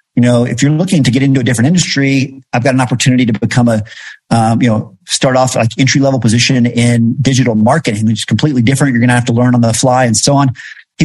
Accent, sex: American, male